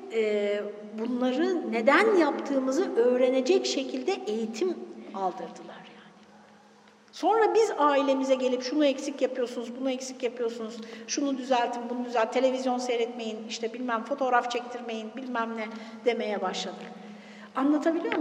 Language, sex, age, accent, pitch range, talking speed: Turkish, female, 60-79, native, 235-315 Hz, 110 wpm